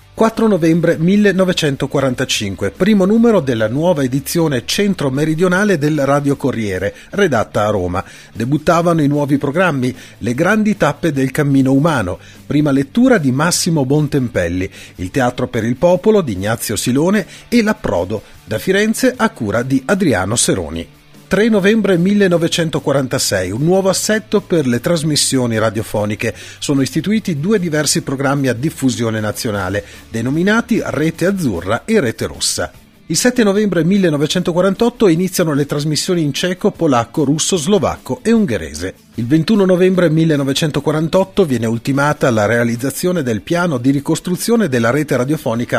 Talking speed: 130 wpm